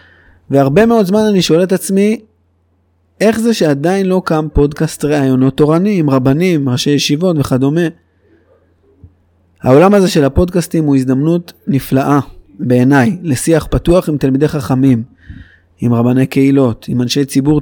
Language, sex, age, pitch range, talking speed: Hebrew, male, 30-49, 120-160 Hz, 135 wpm